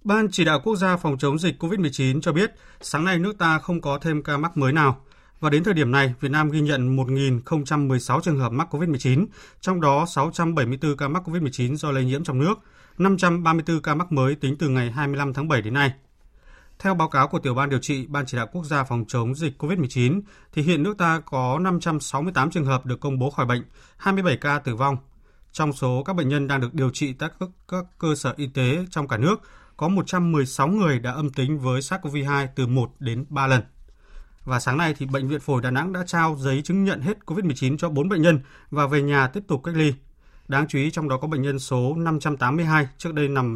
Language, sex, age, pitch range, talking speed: Vietnamese, male, 20-39, 130-165 Hz, 225 wpm